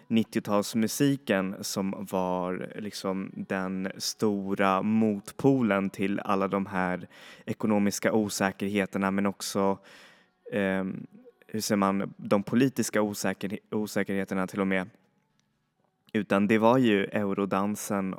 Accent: native